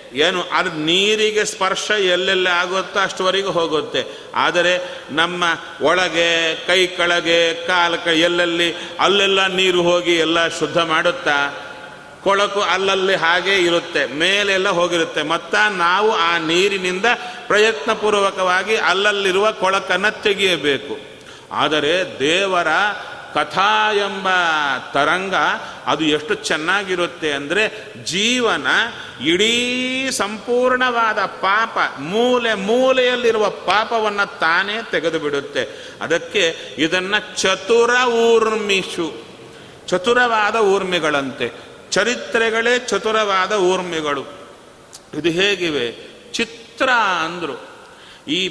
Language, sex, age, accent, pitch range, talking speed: Kannada, male, 30-49, native, 175-230 Hz, 80 wpm